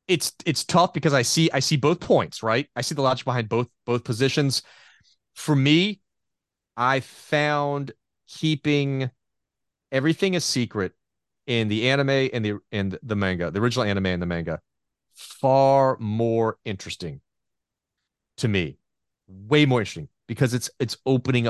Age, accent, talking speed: 30-49, American, 150 wpm